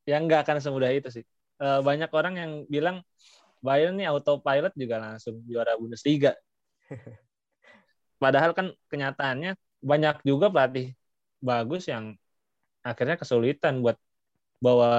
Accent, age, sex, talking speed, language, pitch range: native, 20-39, male, 115 wpm, Indonesian, 125-155 Hz